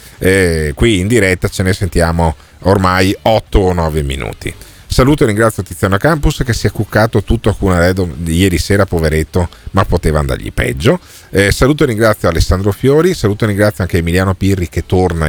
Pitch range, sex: 85-110 Hz, male